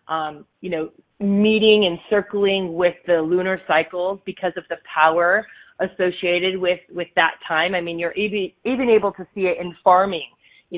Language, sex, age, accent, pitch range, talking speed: English, female, 30-49, American, 165-195 Hz, 165 wpm